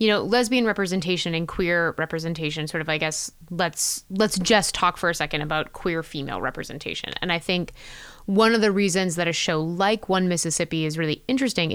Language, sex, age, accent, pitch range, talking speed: English, female, 20-39, American, 170-215 Hz, 195 wpm